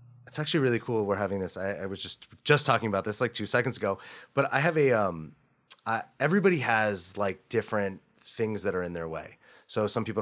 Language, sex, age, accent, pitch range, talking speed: English, male, 30-49, American, 95-130 Hz, 225 wpm